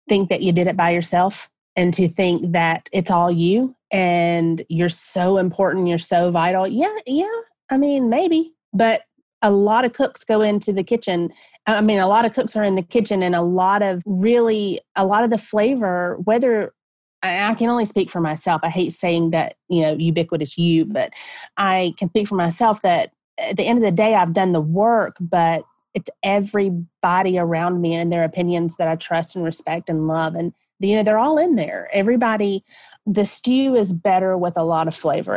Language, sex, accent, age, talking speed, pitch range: English, female, American, 30-49, 205 wpm, 170-220 Hz